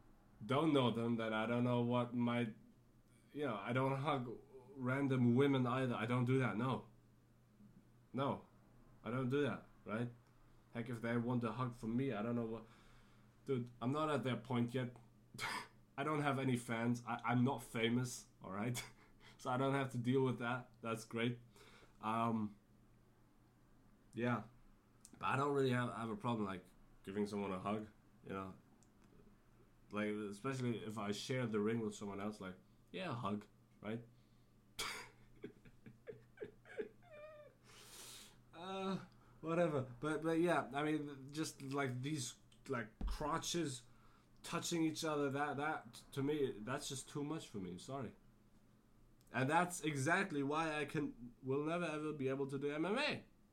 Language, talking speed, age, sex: English, 155 wpm, 20-39, male